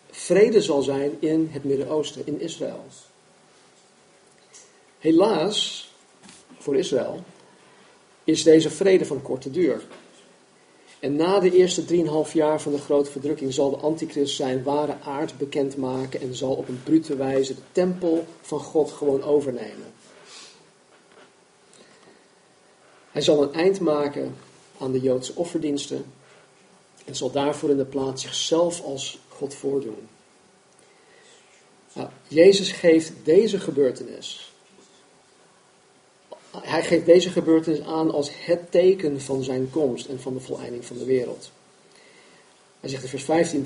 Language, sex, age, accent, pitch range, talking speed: Dutch, male, 50-69, Dutch, 135-160 Hz, 120 wpm